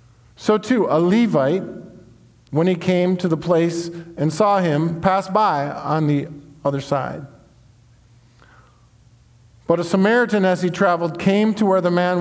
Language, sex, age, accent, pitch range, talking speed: English, male, 50-69, American, 125-180 Hz, 145 wpm